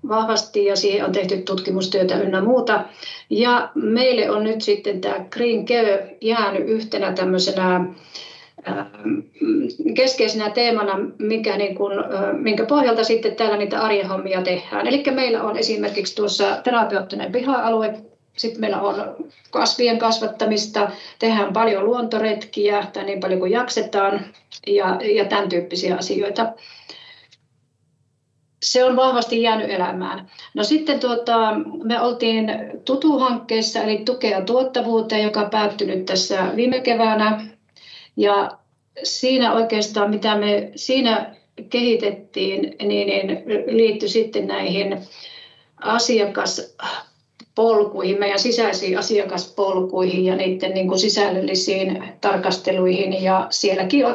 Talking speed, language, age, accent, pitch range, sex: 105 wpm, Finnish, 40-59, native, 195-230 Hz, female